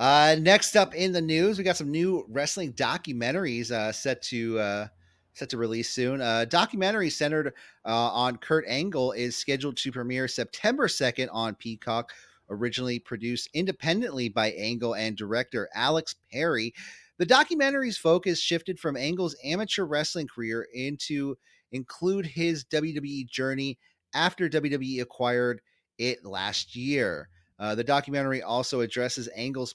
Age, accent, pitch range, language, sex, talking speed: 30-49, American, 110-150 Hz, English, male, 140 wpm